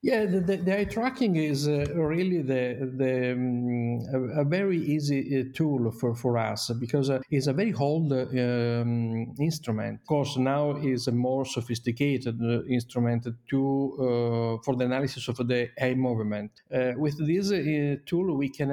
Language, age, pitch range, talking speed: English, 50-69, 125-150 Hz, 175 wpm